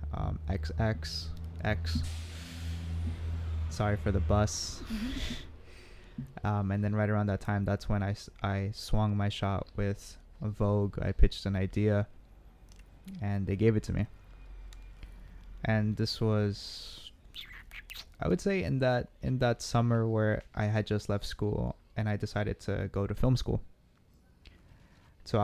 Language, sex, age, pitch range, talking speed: English, male, 20-39, 90-105 Hz, 140 wpm